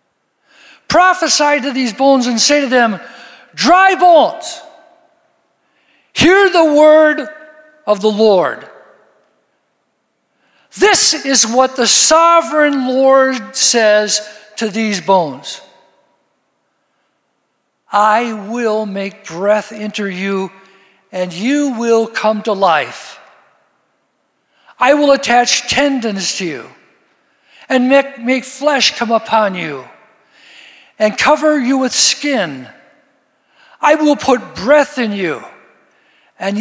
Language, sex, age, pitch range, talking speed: English, male, 60-79, 210-285 Hz, 100 wpm